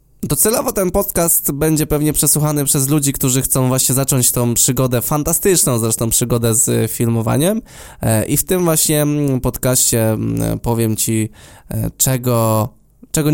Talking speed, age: 135 wpm, 20-39